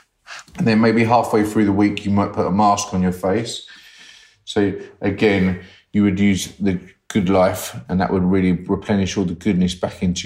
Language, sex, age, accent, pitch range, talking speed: English, male, 30-49, British, 90-100 Hz, 195 wpm